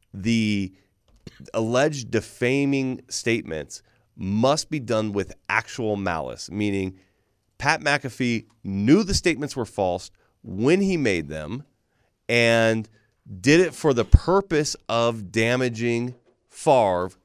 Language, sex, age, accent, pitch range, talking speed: English, male, 30-49, American, 100-125 Hz, 110 wpm